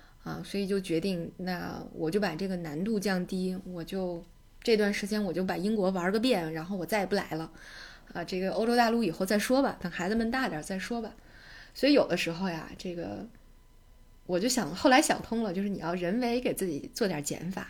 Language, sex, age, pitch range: Chinese, female, 20-39, 175-215 Hz